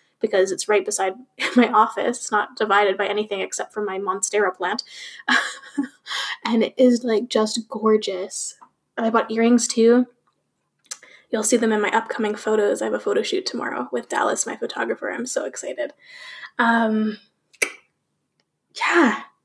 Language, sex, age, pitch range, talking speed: English, female, 10-29, 205-235 Hz, 150 wpm